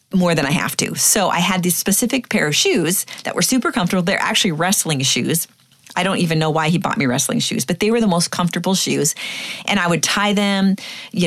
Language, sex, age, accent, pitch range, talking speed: English, female, 40-59, American, 155-200 Hz, 235 wpm